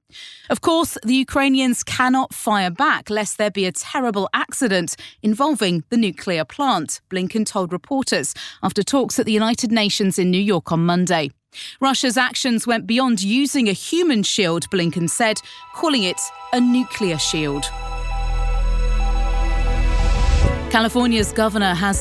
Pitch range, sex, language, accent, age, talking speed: 195-255 Hz, female, English, British, 30-49, 135 wpm